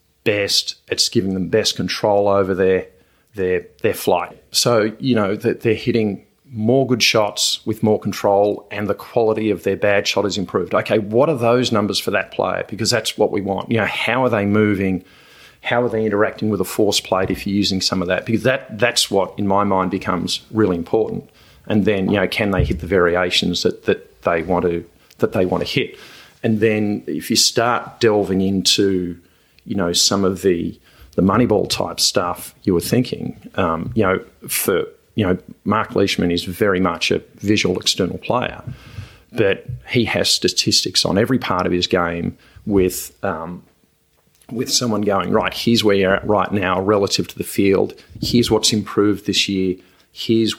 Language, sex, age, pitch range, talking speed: English, male, 40-59, 95-110 Hz, 195 wpm